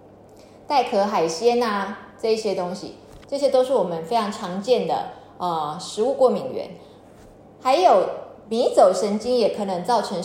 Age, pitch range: 20-39, 185-245 Hz